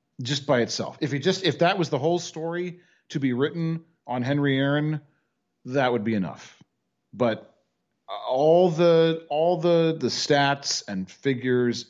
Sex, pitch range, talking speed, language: male, 105-145 Hz, 155 wpm, English